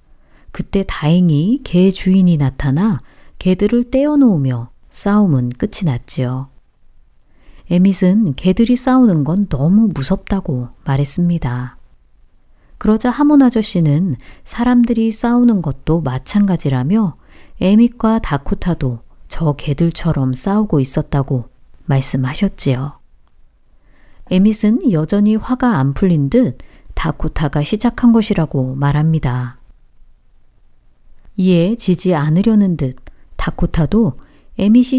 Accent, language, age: native, Korean, 40-59